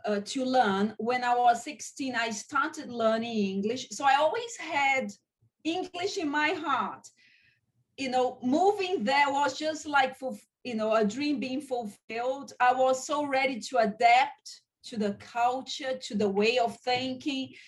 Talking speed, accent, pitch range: 155 wpm, Brazilian, 230-285 Hz